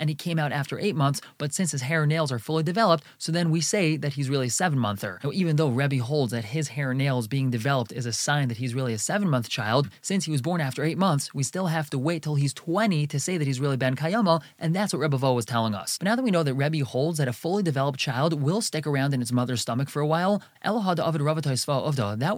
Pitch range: 135-165 Hz